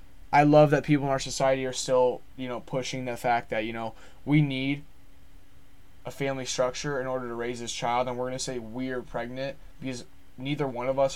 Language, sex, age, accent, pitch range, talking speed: English, male, 20-39, American, 125-160 Hz, 210 wpm